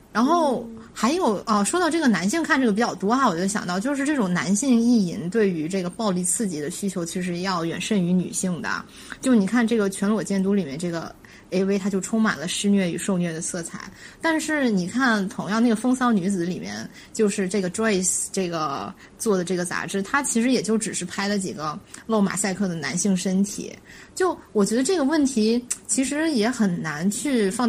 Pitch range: 185-240 Hz